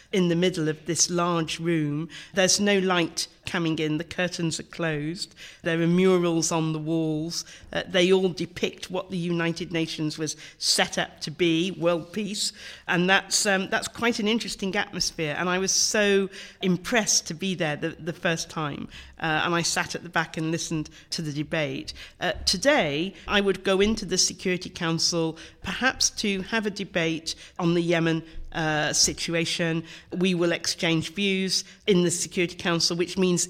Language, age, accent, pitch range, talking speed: English, 50-69, British, 160-190 Hz, 175 wpm